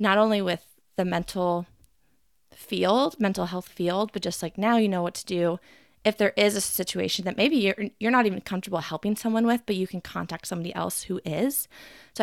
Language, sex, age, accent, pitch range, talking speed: English, female, 20-39, American, 180-220 Hz, 205 wpm